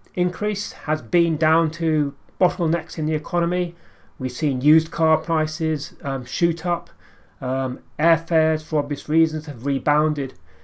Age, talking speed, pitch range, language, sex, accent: 30-49, 135 wpm, 130-165 Hz, English, male, British